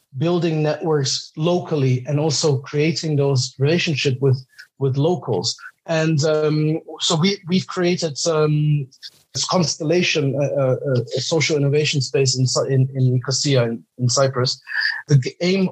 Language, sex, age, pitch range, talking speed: English, male, 30-49, 130-155 Hz, 135 wpm